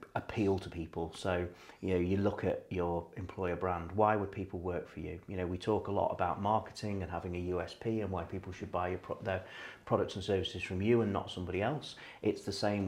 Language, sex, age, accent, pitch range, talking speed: English, male, 40-59, British, 90-100 Hz, 235 wpm